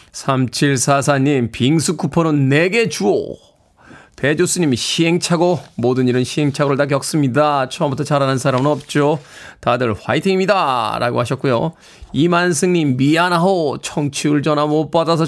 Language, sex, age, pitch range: Korean, male, 20-39, 130-180 Hz